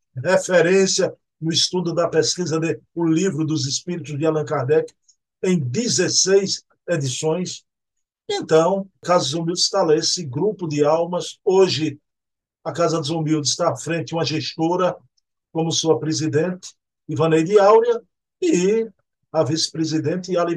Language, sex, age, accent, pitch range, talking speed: Portuguese, male, 50-69, Brazilian, 150-185 Hz, 130 wpm